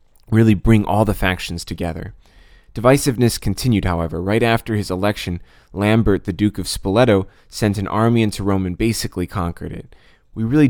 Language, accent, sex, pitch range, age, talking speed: English, American, male, 95-110 Hz, 20-39, 165 wpm